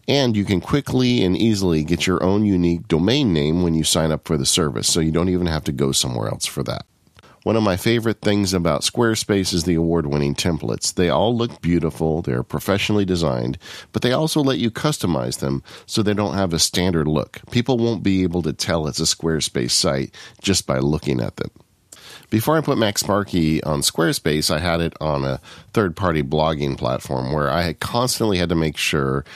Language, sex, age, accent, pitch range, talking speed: English, male, 50-69, American, 75-105 Hz, 205 wpm